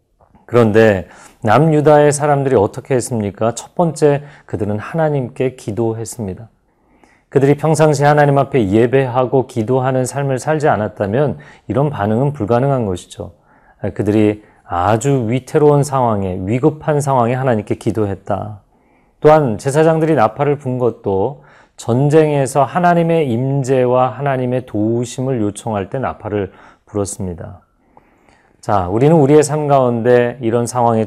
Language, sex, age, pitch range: Korean, male, 40-59, 105-140 Hz